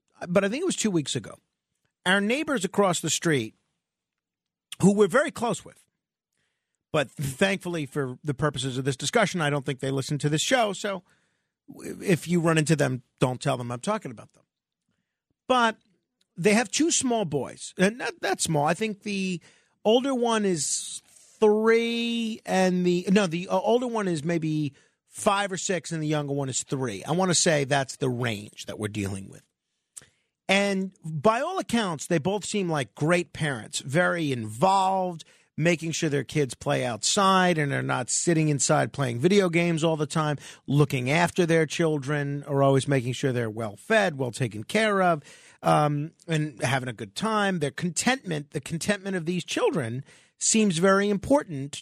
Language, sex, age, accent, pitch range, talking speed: English, male, 50-69, American, 145-200 Hz, 175 wpm